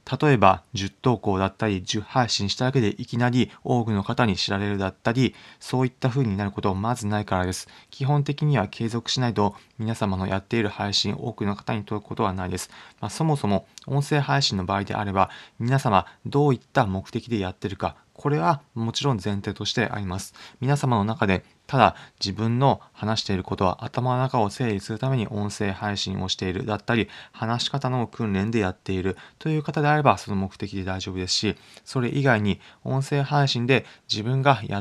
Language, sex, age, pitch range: Japanese, male, 20-39, 100-130 Hz